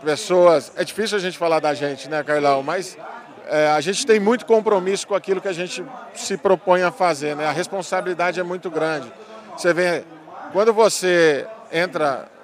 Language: Portuguese